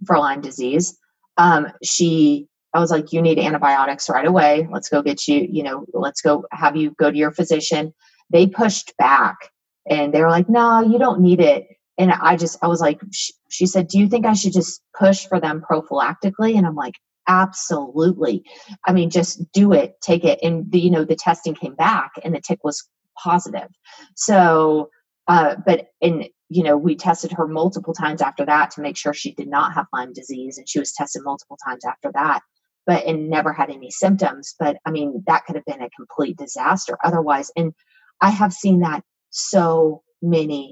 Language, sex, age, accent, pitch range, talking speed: English, female, 30-49, American, 150-190 Hz, 200 wpm